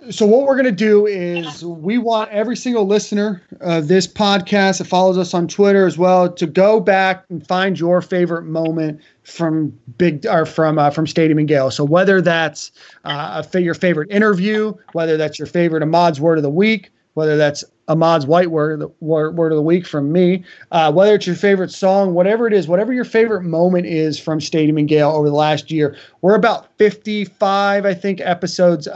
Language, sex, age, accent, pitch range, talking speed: English, male, 30-49, American, 155-190 Hz, 200 wpm